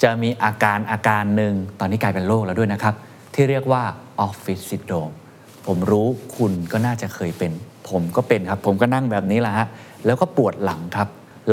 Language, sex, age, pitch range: Thai, male, 20-39, 100-135 Hz